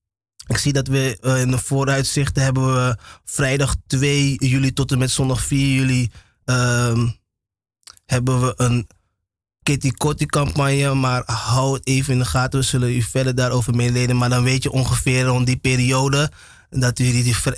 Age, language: 20-39, Dutch